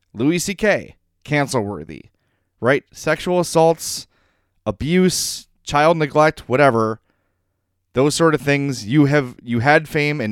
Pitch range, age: 95-130 Hz, 30-49